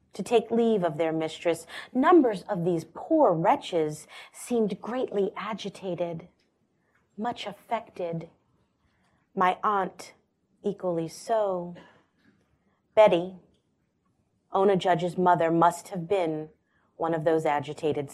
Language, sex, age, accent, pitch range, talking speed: English, female, 30-49, American, 175-220 Hz, 105 wpm